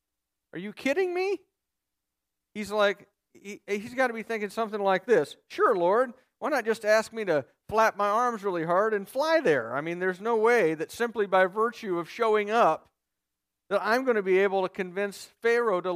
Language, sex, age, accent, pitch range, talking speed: English, male, 50-69, American, 145-235 Hz, 195 wpm